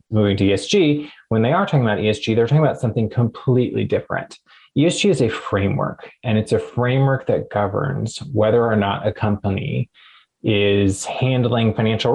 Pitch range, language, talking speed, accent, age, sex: 105-130 Hz, English, 165 wpm, American, 20-39, male